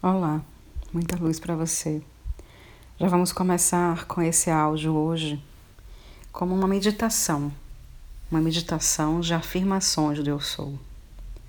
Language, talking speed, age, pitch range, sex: Portuguese, 115 wpm, 40-59, 140-170 Hz, female